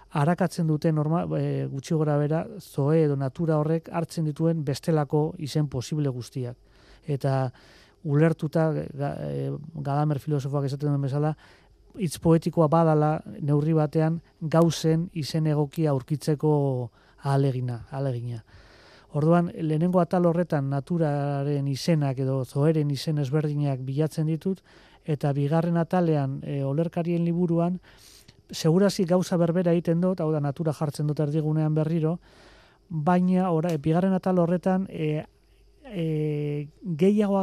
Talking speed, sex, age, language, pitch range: 115 wpm, male, 30-49, Spanish, 145-170 Hz